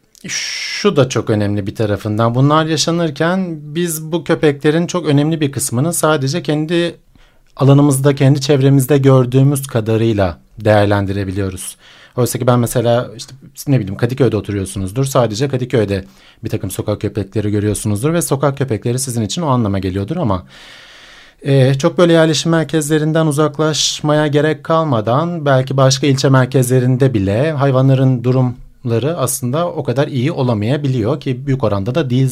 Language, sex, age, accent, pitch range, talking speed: Turkish, male, 40-59, native, 120-155 Hz, 135 wpm